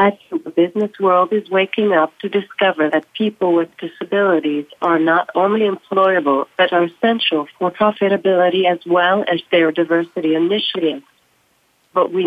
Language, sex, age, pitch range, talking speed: English, female, 40-59, 165-200 Hz, 145 wpm